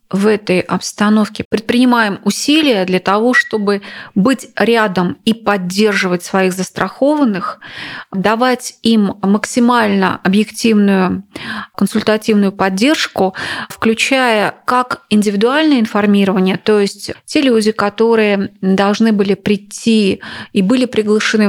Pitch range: 195-230 Hz